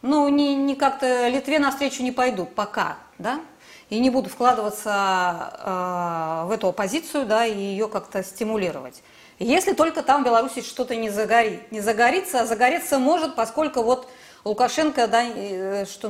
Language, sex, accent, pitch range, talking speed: Russian, female, native, 195-255 Hz, 155 wpm